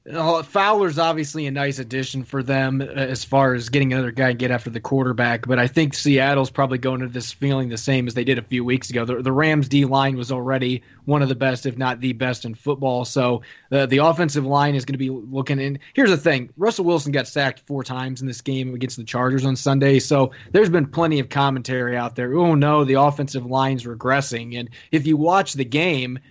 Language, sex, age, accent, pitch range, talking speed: English, male, 20-39, American, 130-150 Hz, 230 wpm